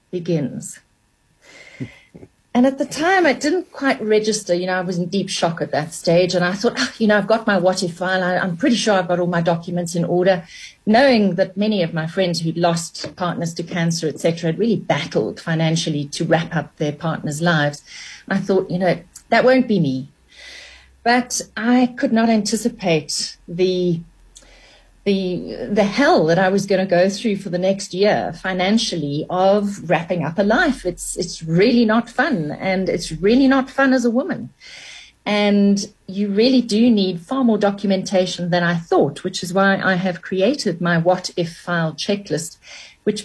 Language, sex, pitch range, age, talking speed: English, female, 170-215 Hz, 40-59, 180 wpm